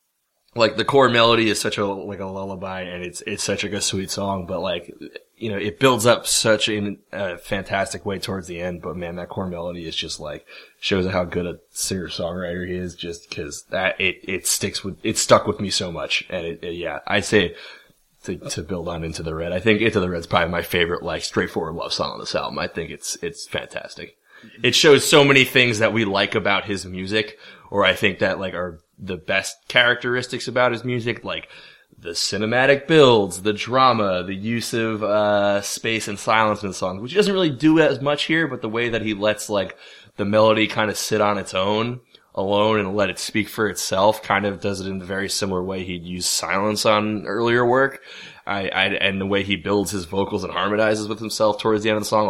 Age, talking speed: 20-39, 225 wpm